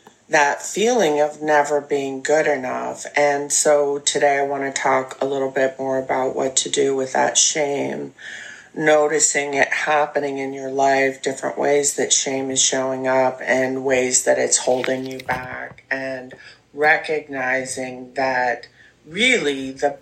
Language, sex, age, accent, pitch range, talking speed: English, female, 30-49, American, 125-140 Hz, 150 wpm